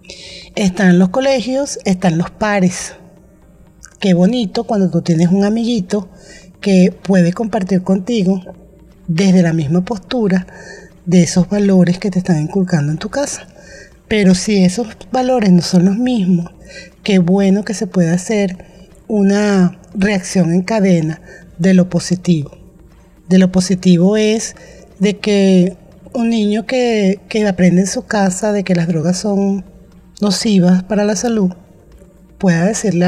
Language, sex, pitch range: Spanish, female, 180-205 Hz